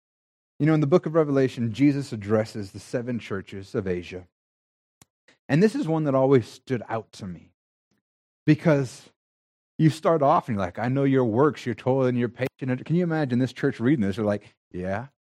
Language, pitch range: English, 115-165 Hz